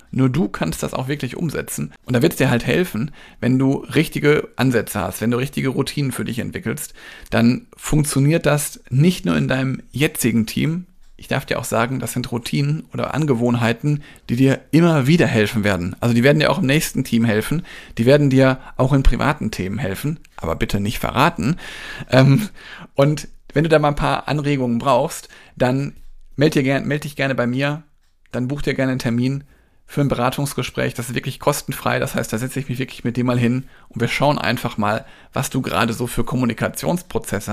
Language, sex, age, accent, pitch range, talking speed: German, male, 40-59, German, 120-145 Hz, 195 wpm